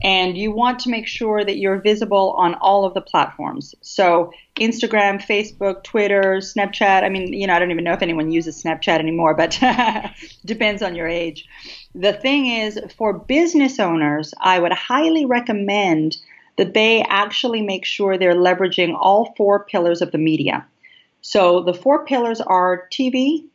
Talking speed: 170 wpm